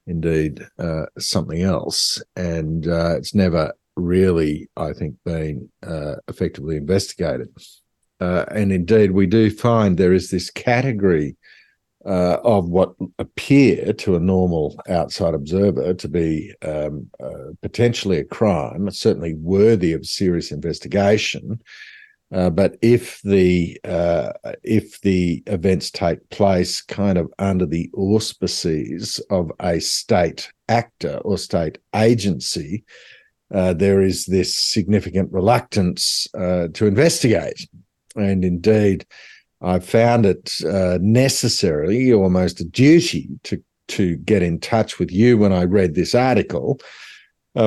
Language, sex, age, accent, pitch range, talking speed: English, male, 50-69, Australian, 85-110 Hz, 125 wpm